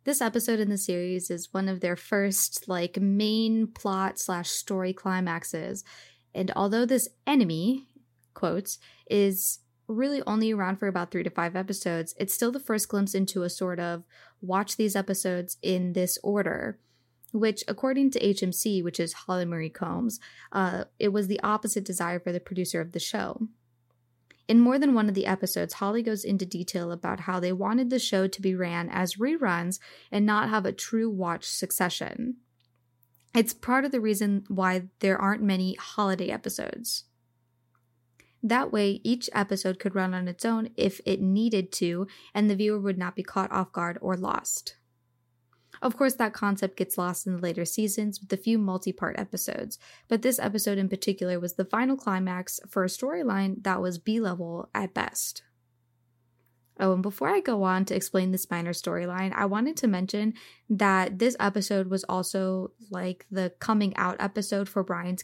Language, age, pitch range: English, 10-29, 180-215 Hz